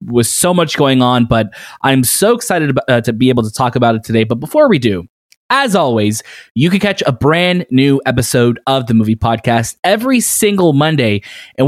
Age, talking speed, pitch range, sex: 20-39, 200 wpm, 120-155 Hz, male